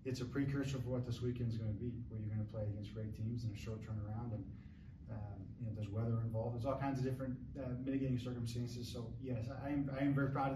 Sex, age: male, 20-39